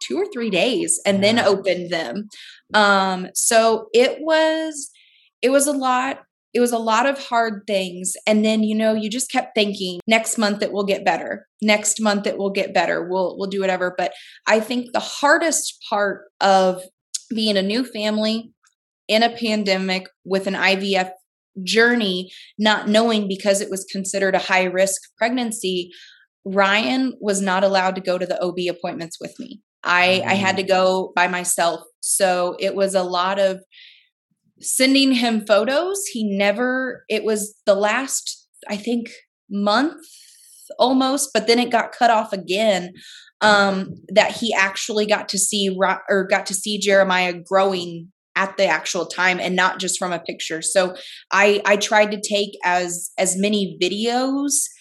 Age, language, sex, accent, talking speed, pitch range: 20-39, English, female, American, 165 wpm, 190-230 Hz